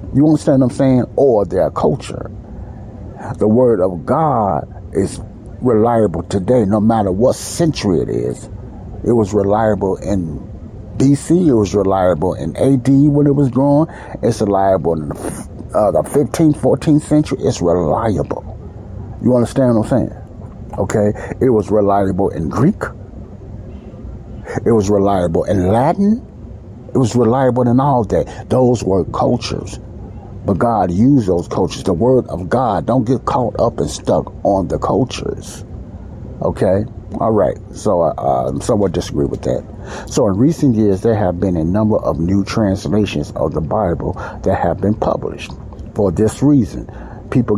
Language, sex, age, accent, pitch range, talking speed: English, male, 60-79, American, 100-120 Hz, 155 wpm